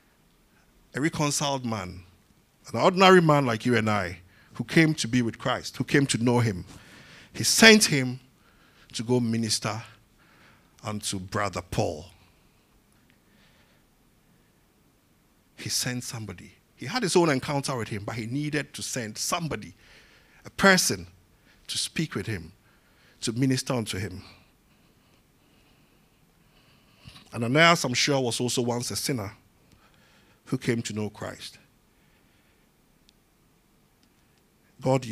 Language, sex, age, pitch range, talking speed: English, male, 50-69, 105-135 Hz, 120 wpm